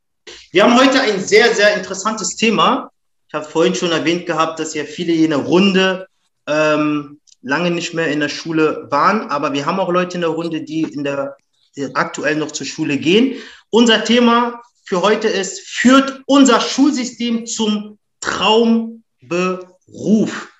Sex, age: male, 30-49